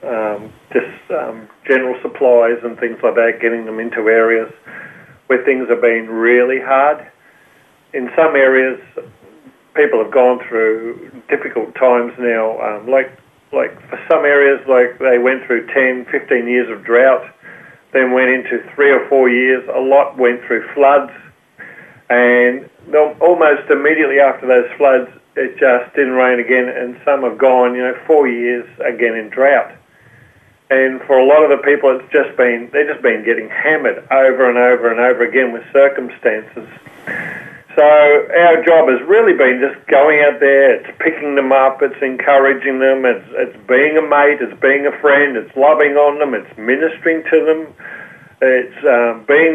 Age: 40-59